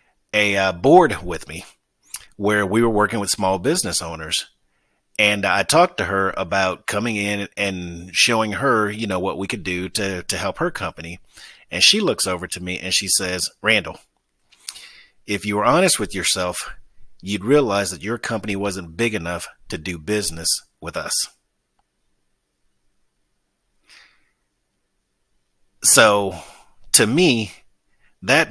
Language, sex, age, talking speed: English, male, 40-59, 140 wpm